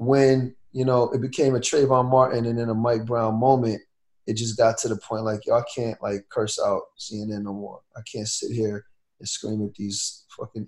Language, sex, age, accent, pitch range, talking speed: English, male, 30-49, American, 105-125 Hz, 215 wpm